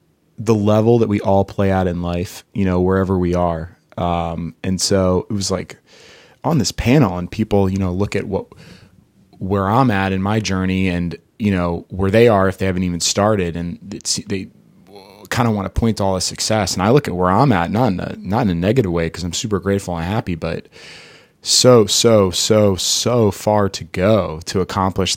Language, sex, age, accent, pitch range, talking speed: English, male, 20-39, American, 90-105 Hz, 210 wpm